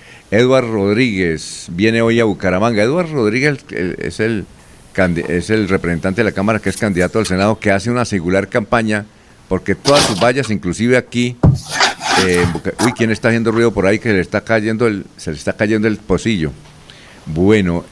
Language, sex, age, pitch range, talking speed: Spanish, male, 50-69, 95-130 Hz, 180 wpm